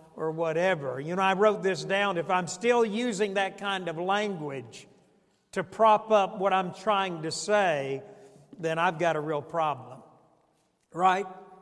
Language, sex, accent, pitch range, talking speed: English, male, American, 175-220 Hz, 160 wpm